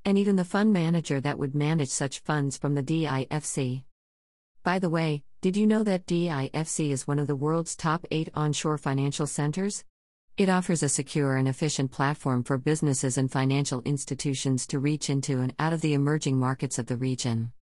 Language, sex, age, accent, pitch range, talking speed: English, female, 50-69, American, 130-155 Hz, 185 wpm